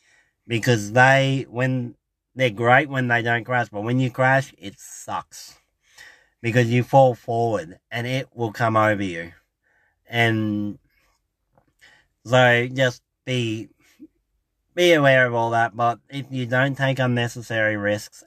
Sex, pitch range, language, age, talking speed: male, 100-125 Hz, English, 30-49, 135 wpm